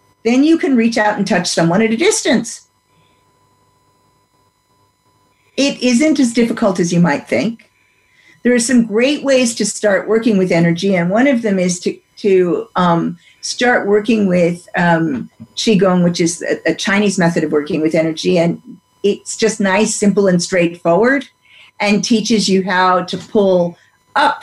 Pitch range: 170-220 Hz